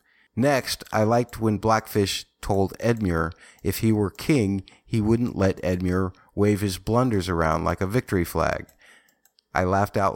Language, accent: English, American